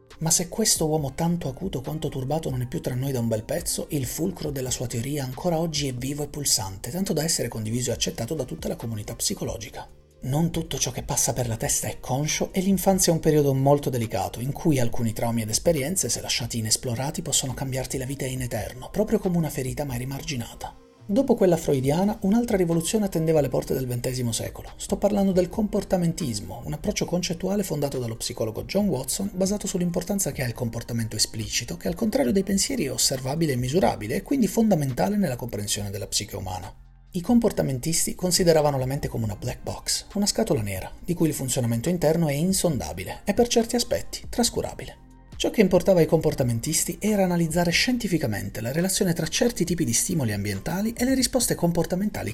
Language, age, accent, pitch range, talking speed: Italian, 30-49, native, 125-185 Hz, 195 wpm